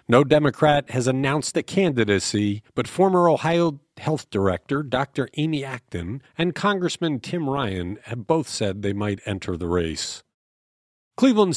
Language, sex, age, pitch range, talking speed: English, male, 50-69, 105-165 Hz, 140 wpm